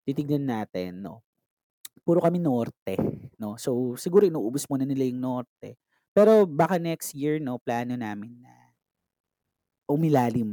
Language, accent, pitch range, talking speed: Filipino, native, 130-195 Hz, 130 wpm